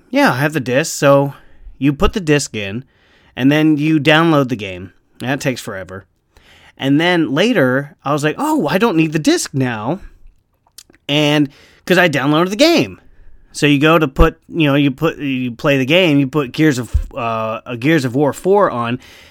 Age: 30-49